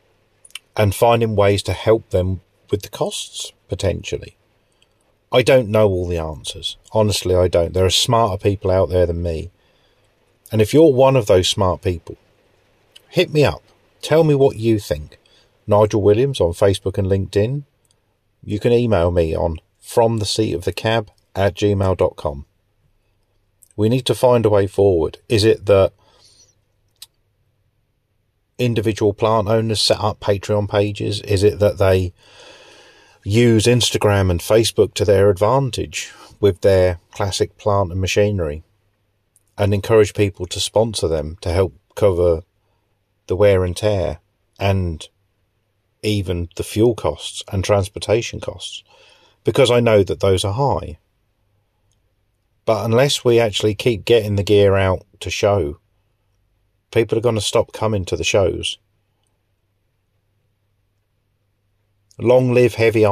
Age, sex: 40-59, male